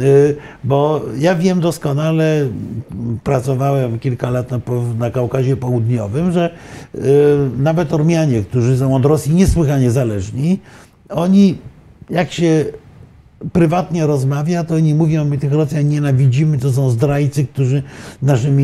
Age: 50-69